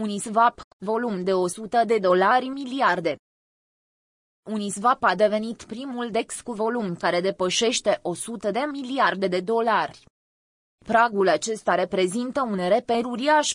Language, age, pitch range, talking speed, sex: Romanian, 20-39, 185-235 Hz, 120 wpm, female